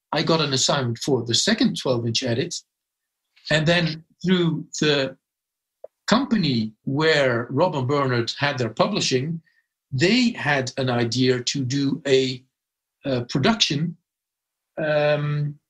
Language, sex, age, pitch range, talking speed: English, male, 50-69, 130-175 Hz, 120 wpm